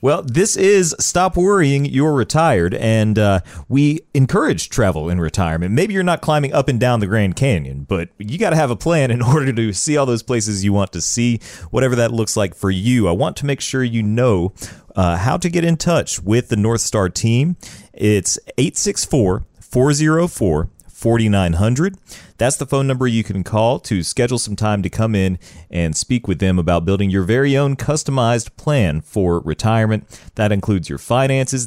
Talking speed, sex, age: 190 wpm, male, 40-59